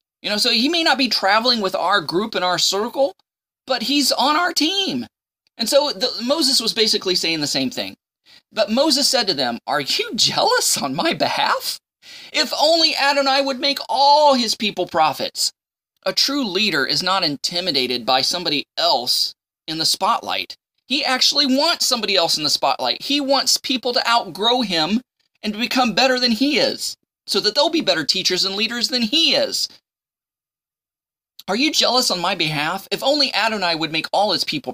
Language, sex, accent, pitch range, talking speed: English, male, American, 190-275 Hz, 185 wpm